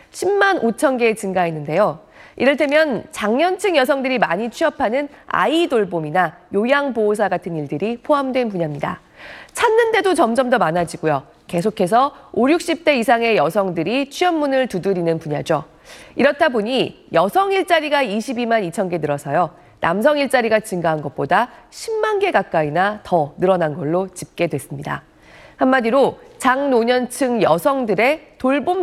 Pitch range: 180-280 Hz